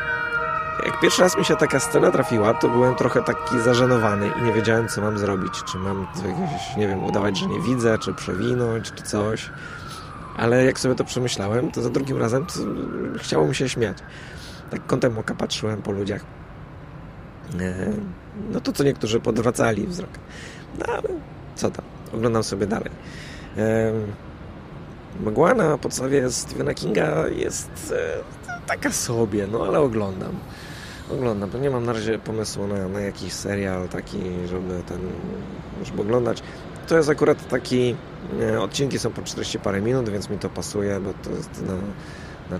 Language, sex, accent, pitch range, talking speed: Polish, male, native, 95-125 Hz, 155 wpm